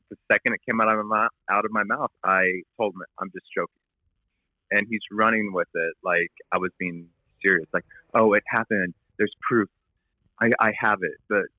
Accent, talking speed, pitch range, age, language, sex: American, 200 wpm, 90-110 Hz, 30-49, English, male